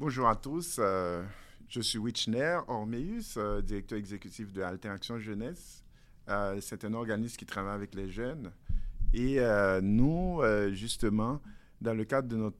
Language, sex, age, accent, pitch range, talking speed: French, male, 50-69, French, 105-125 Hz, 135 wpm